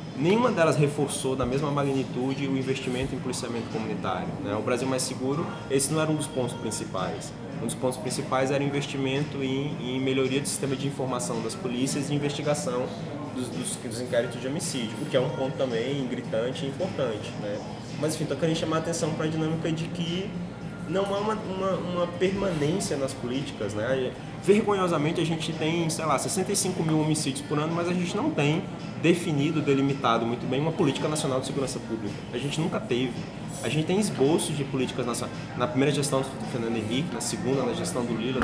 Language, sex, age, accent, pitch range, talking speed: Portuguese, male, 20-39, Brazilian, 130-160 Hz, 195 wpm